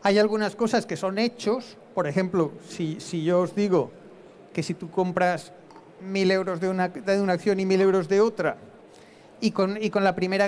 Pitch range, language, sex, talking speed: 180-205 Hz, Spanish, male, 190 wpm